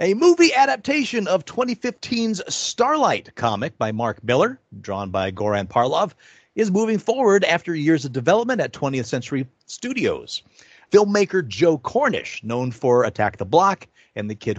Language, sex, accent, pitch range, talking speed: English, male, American, 115-185 Hz, 150 wpm